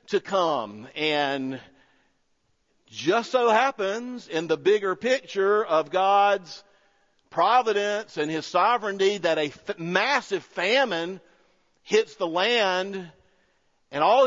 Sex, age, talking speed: male, 50-69, 110 wpm